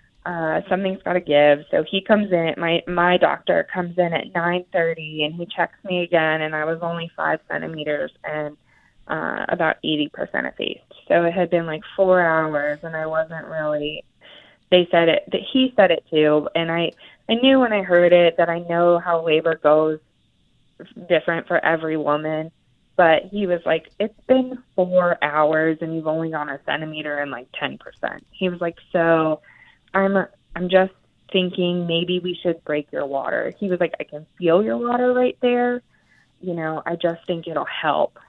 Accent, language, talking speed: American, English, 185 wpm